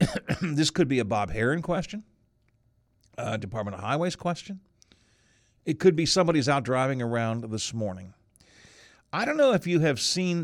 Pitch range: 115-185 Hz